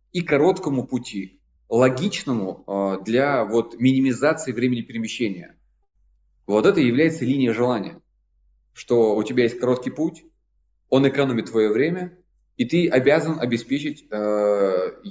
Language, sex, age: Russian, male, 20-39